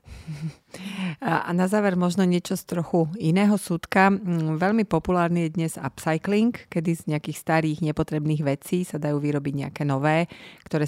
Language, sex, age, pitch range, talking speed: Slovak, female, 30-49, 140-175 Hz, 145 wpm